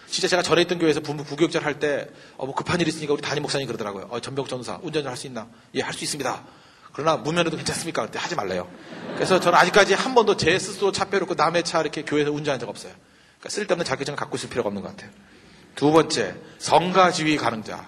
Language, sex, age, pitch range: Korean, male, 40-59, 140-230 Hz